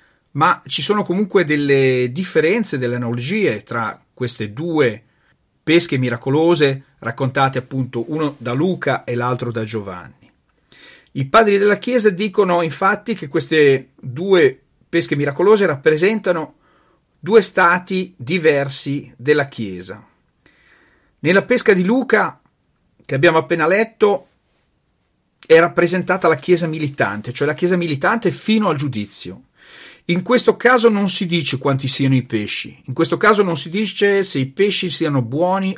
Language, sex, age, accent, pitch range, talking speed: Italian, male, 40-59, native, 140-195 Hz, 135 wpm